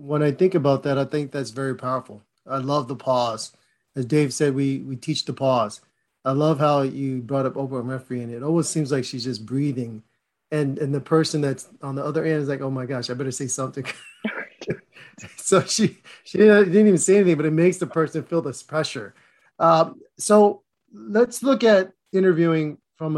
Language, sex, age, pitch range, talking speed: English, male, 30-49, 135-160 Hz, 200 wpm